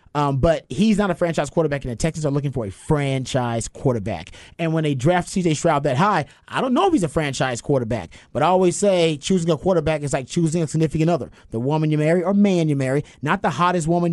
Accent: American